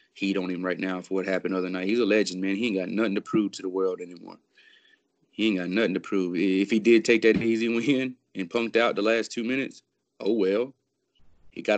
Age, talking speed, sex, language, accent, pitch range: 20-39, 250 wpm, male, English, American, 95-105 Hz